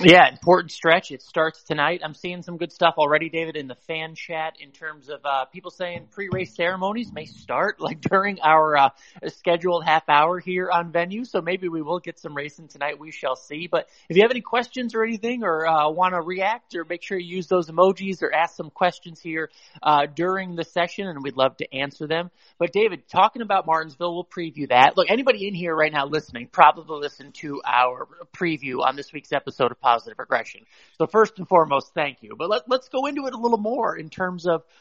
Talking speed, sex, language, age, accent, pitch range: 220 wpm, male, English, 30-49, American, 155-190 Hz